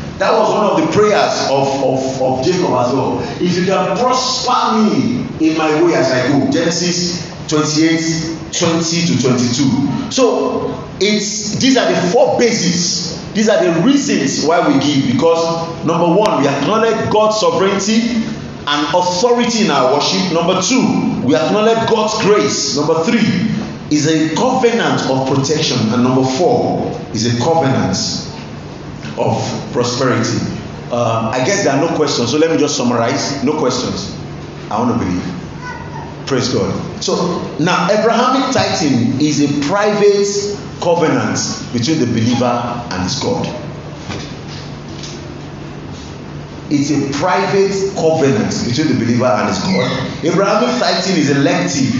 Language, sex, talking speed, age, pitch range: English, male, 145 wpm, 50-69, 140-210 Hz